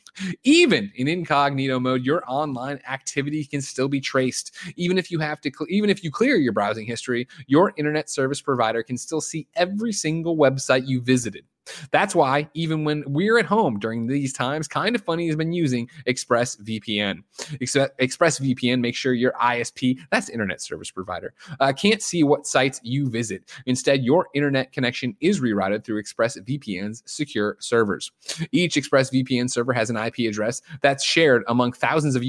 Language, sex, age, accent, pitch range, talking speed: English, male, 20-39, American, 125-155 Hz, 170 wpm